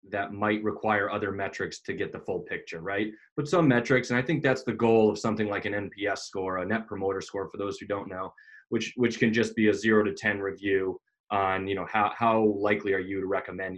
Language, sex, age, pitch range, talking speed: English, male, 20-39, 95-110 Hz, 240 wpm